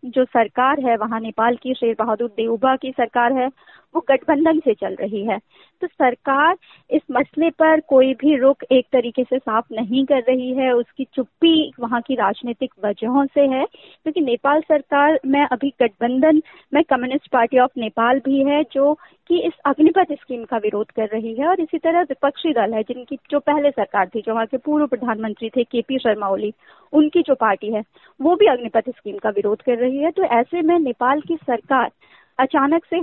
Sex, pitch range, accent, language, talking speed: female, 245-305 Hz, native, Hindi, 195 wpm